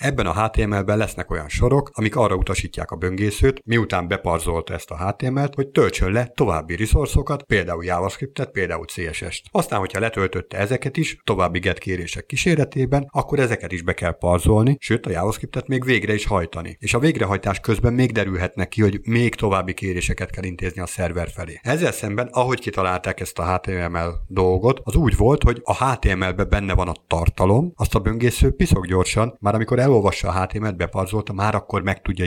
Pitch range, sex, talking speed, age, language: 95-115 Hz, male, 180 wpm, 50-69, Hungarian